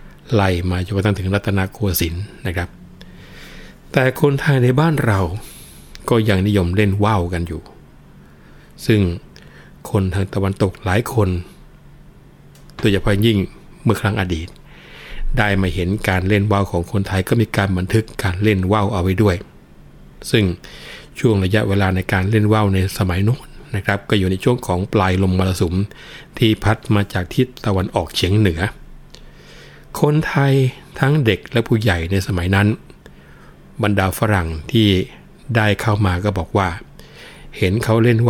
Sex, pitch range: male, 95-110 Hz